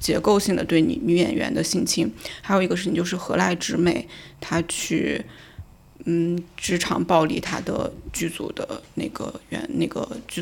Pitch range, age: 165-195 Hz, 20-39